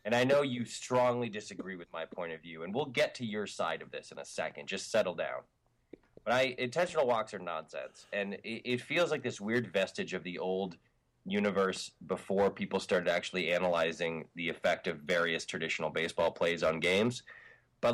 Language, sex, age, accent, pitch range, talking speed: English, male, 20-39, American, 95-125 Hz, 190 wpm